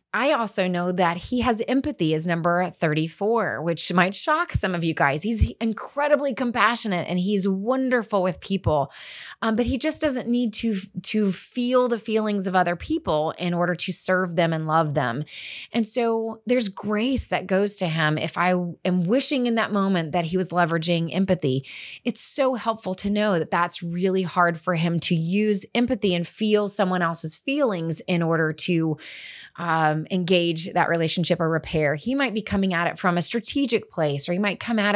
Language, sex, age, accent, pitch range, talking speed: English, female, 20-39, American, 170-225 Hz, 190 wpm